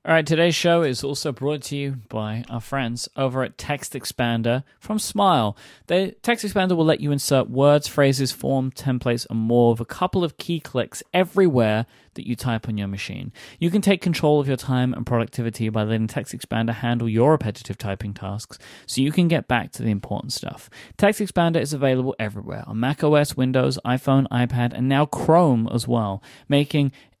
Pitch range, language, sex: 115-150 Hz, English, male